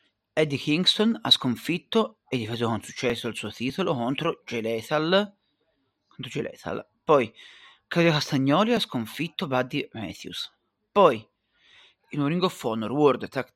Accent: native